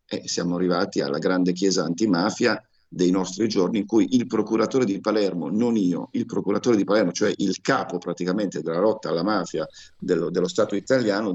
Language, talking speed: Italian, 180 wpm